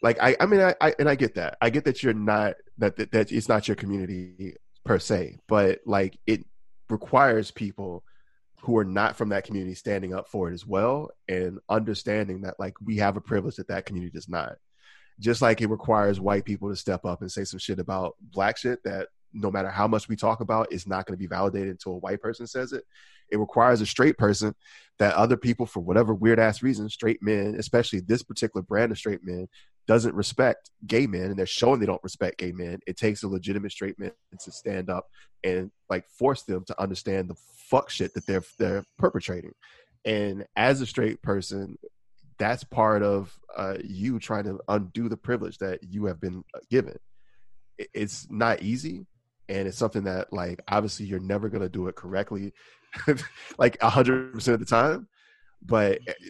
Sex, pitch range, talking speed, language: male, 95-115 Hz, 200 wpm, English